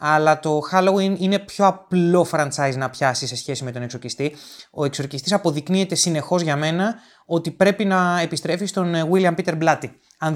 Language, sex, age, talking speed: Greek, male, 20-39, 170 wpm